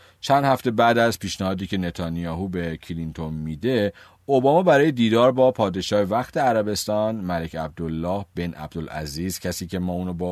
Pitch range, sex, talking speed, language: 85-130 Hz, male, 150 wpm, Persian